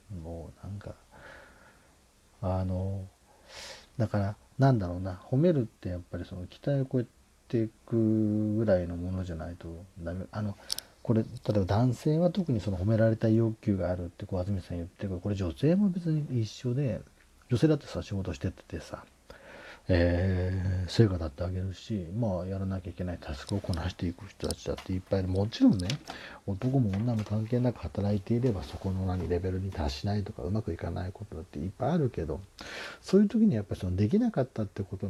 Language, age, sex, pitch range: Japanese, 40-59, male, 90-110 Hz